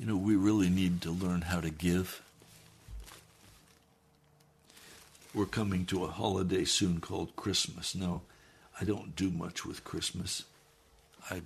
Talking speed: 135 wpm